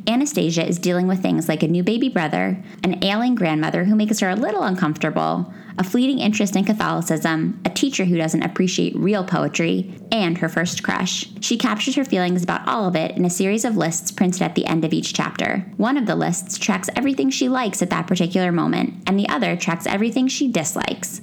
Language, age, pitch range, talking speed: English, 20-39, 175-230 Hz, 210 wpm